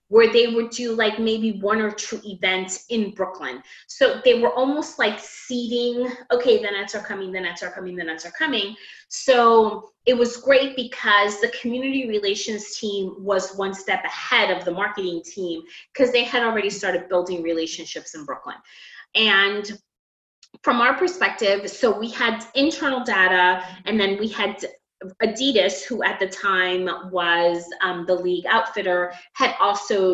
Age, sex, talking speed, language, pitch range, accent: 20-39, female, 165 wpm, English, 185-235 Hz, American